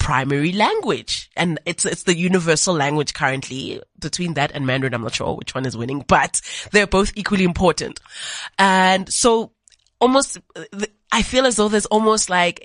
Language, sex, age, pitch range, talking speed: English, female, 20-39, 150-195 Hz, 165 wpm